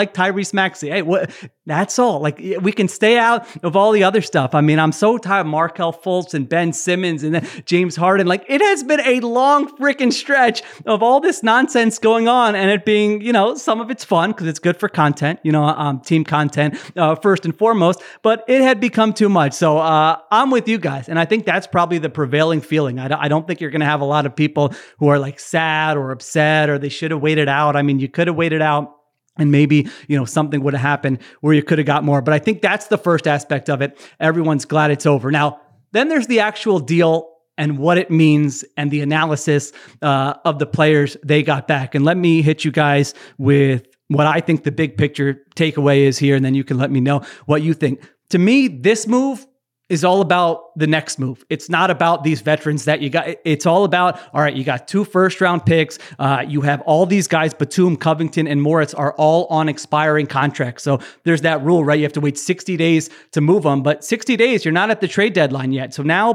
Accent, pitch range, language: American, 145-190 Hz, English